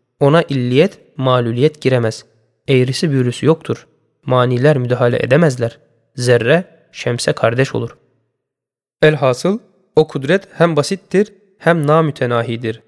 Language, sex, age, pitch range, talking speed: Turkish, male, 20-39, 125-175 Hz, 100 wpm